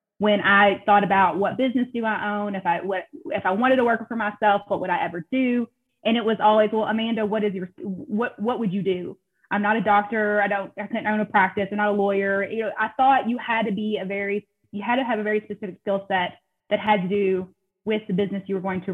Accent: American